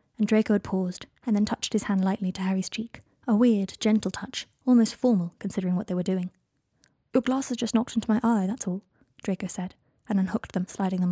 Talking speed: 210 wpm